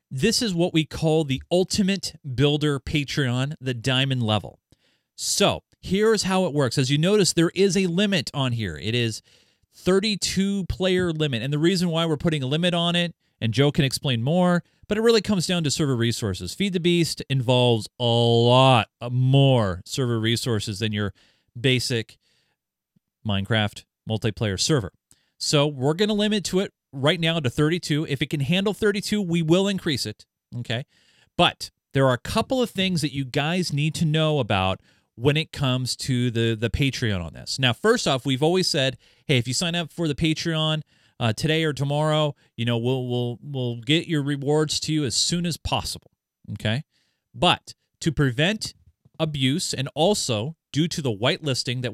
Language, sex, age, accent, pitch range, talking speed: English, male, 30-49, American, 120-165 Hz, 180 wpm